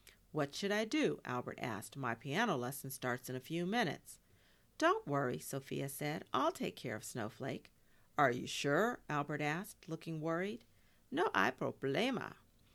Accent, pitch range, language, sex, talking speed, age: American, 125-165 Hz, English, female, 155 wpm, 50-69